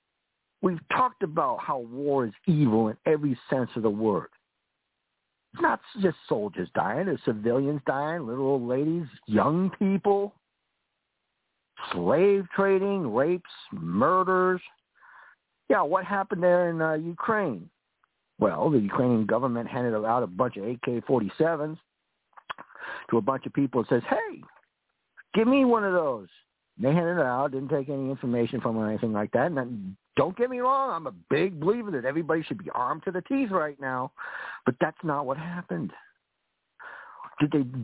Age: 60-79